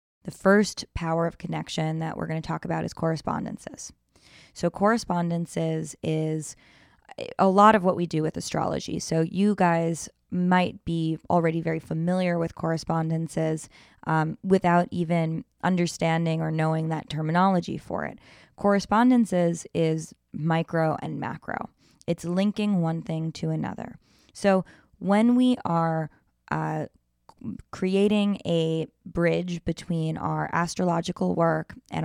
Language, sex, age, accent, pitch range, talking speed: English, female, 20-39, American, 160-180 Hz, 125 wpm